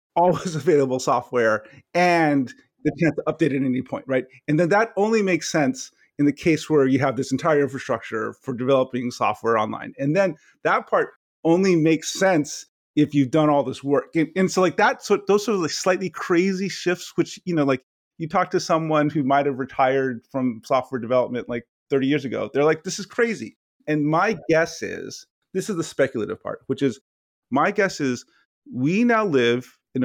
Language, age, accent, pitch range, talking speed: English, 30-49, American, 130-170 Hz, 200 wpm